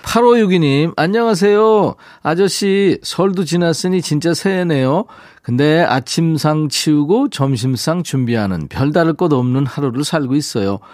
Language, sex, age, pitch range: Korean, male, 40-59, 125-170 Hz